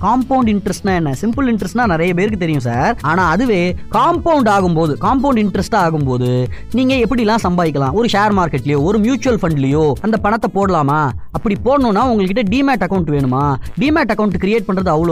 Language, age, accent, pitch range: Tamil, 20-39, native, 170-255 Hz